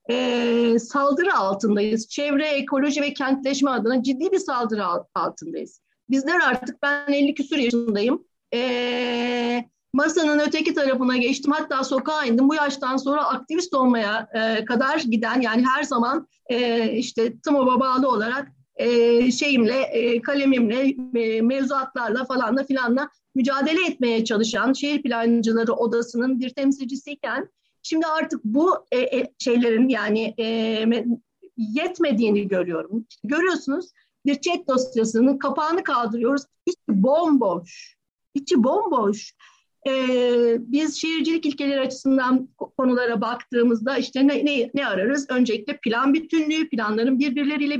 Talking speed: 115 wpm